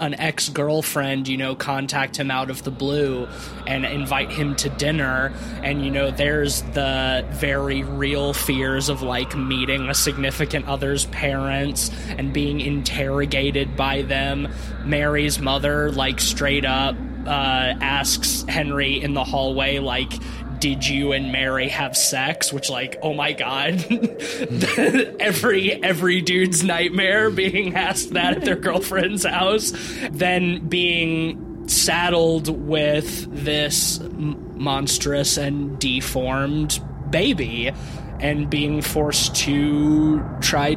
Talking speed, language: 120 wpm, English